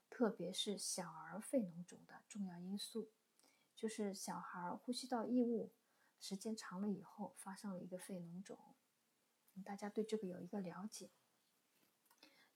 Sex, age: female, 20-39